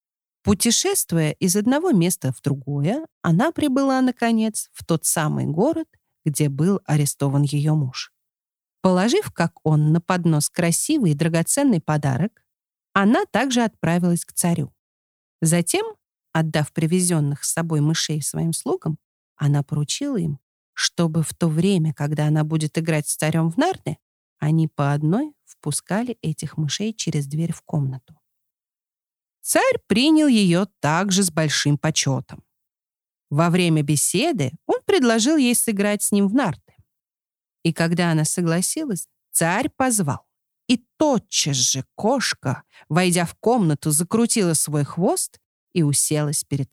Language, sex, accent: Russian, female, native